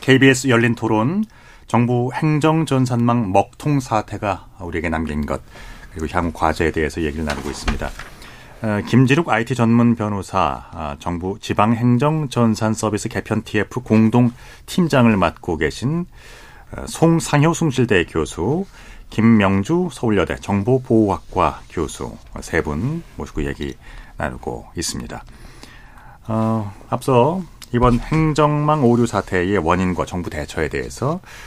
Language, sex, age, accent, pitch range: Korean, male, 40-59, native, 90-130 Hz